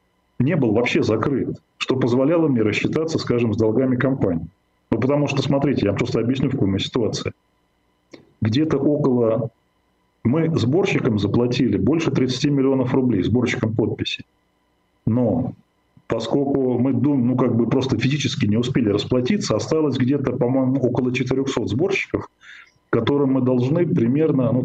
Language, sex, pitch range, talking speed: Russian, male, 110-140 Hz, 140 wpm